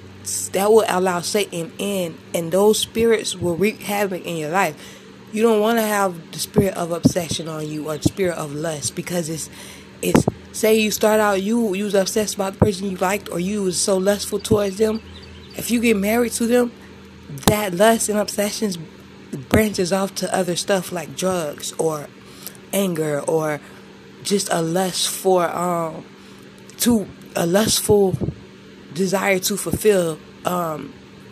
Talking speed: 165 wpm